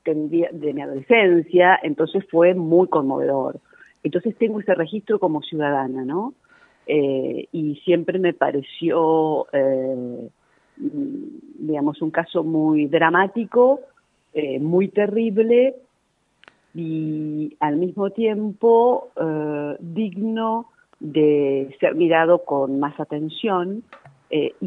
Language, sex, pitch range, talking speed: Spanish, female, 145-195 Hz, 100 wpm